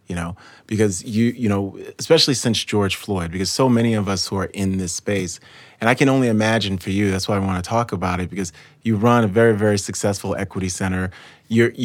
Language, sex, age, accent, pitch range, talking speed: English, male, 30-49, American, 100-130 Hz, 230 wpm